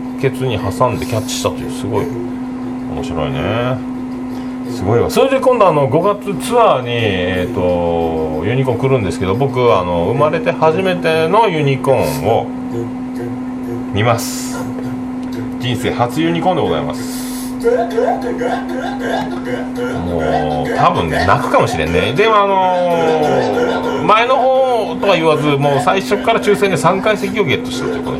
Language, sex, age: Japanese, male, 40-59